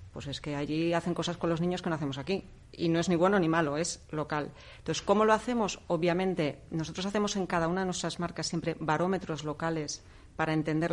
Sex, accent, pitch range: female, Spanish, 150-175 Hz